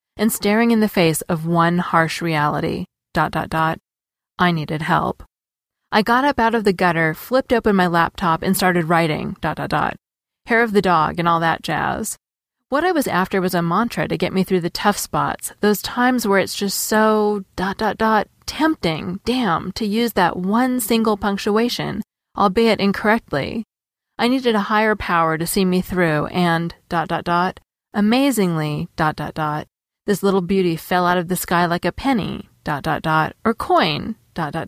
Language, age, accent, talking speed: English, 30-49, American, 185 wpm